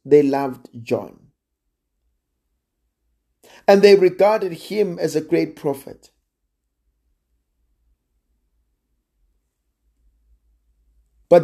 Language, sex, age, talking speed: English, male, 50-69, 65 wpm